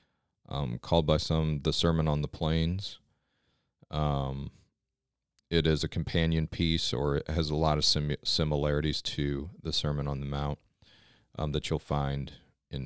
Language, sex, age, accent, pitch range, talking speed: English, male, 40-59, American, 75-85 Hz, 155 wpm